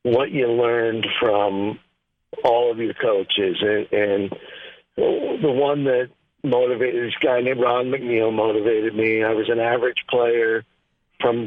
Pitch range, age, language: 115-130 Hz, 50-69, English